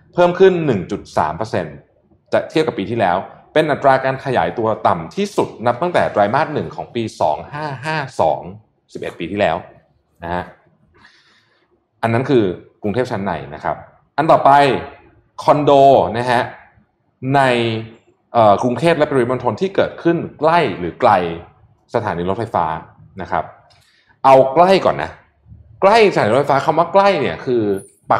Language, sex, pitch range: Thai, male, 100-140 Hz